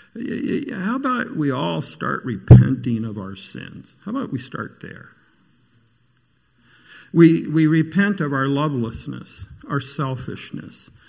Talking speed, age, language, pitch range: 120 wpm, 50-69, English, 135-205 Hz